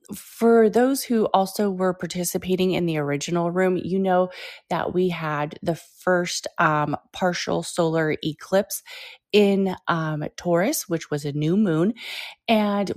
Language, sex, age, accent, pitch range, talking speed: English, female, 30-49, American, 165-210 Hz, 140 wpm